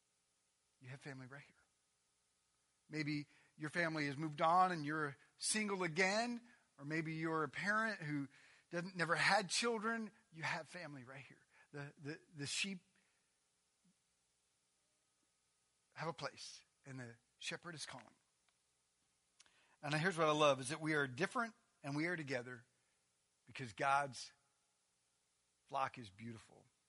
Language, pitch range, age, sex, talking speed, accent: English, 125-170 Hz, 40-59, male, 135 wpm, American